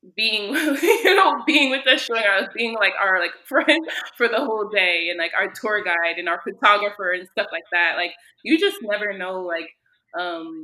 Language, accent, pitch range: English, American, 175-240 Hz